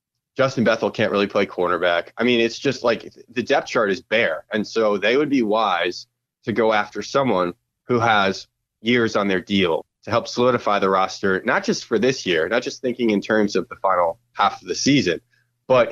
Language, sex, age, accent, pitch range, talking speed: English, male, 30-49, American, 100-120 Hz, 205 wpm